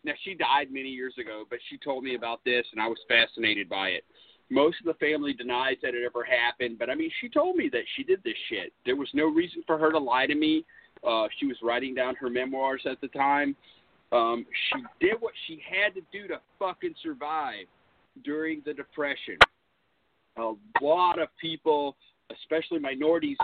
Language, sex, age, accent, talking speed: English, male, 40-59, American, 200 wpm